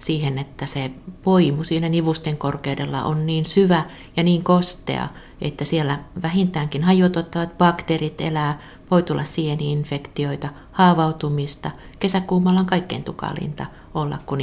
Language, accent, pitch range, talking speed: Finnish, native, 140-175 Hz, 120 wpm